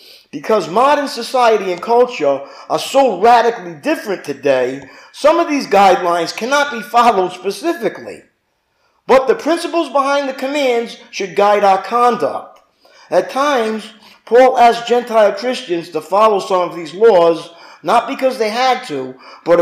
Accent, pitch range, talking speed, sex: American, 170-245 Hz, 140 wpm, male